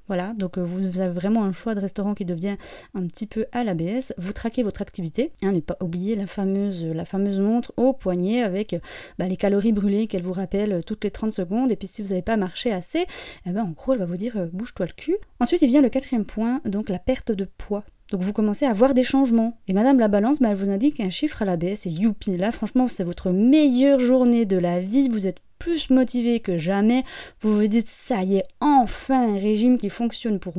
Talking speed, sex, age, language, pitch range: 240 wpm, female, 20-39, French, 190-245 Hz